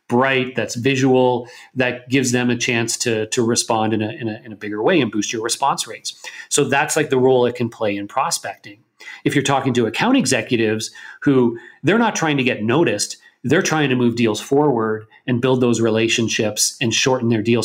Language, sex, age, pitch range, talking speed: English, male, 40-59, 115-135 Hz, 205 wpm